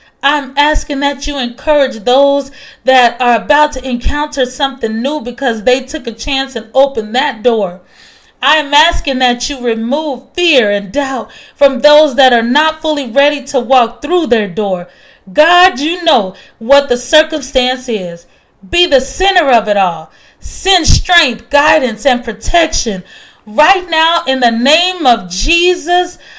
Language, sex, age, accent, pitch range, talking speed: English, female, 30-49, American, 230-285 Hz, 150 wpm